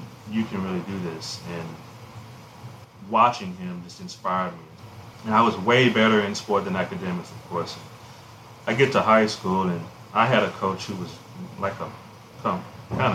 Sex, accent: male, American